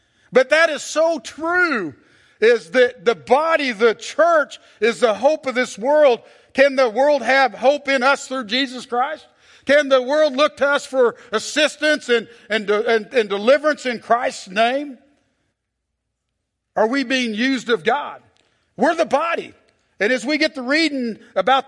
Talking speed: 165 wpm